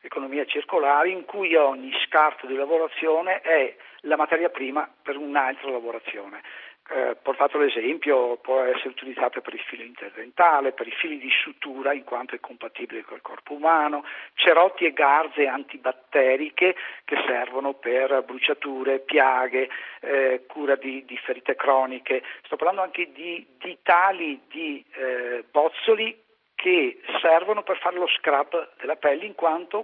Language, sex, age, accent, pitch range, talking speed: Italian, male, 50-69, native, 135-175 Hz, 145 wpm